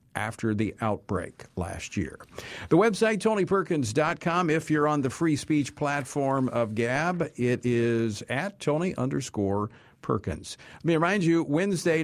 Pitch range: 120-155 Hz